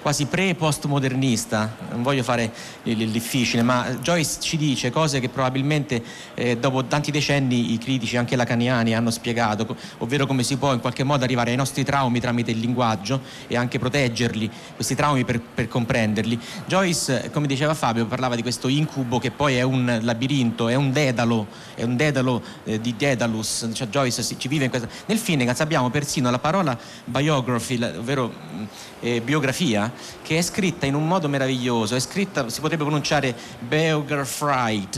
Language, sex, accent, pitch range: Italian, male, native, 120-150 Hz